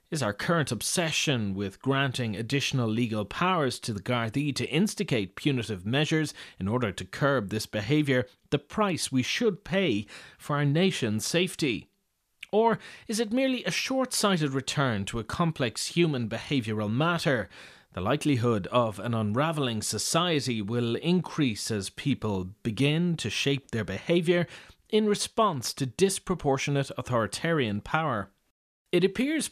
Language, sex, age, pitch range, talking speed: English, male, 30-49, 115-160 Hz, 135 wpm